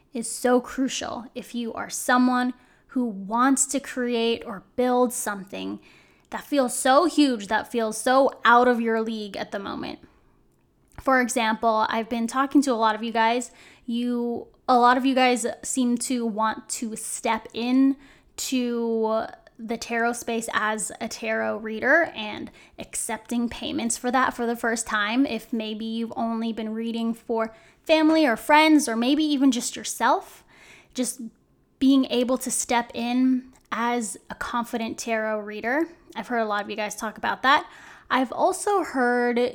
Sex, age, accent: female, 10-29, American